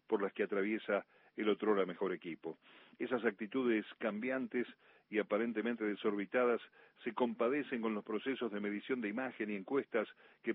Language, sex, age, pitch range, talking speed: Spanish, male, 40-59, 105-125 Hz, 155 wpm